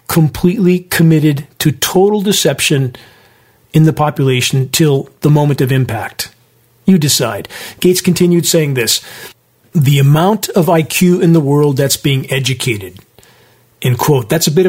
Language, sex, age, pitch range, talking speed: English, male, 40-59, 135-170 Hz, 140 wpm